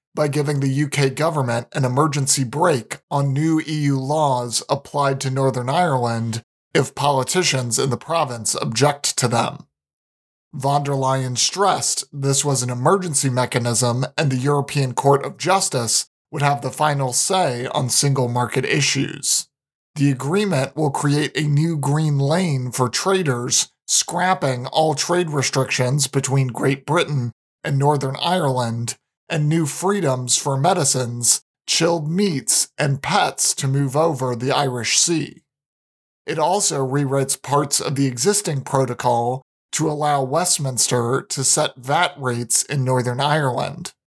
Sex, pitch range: male, 130-150 Hz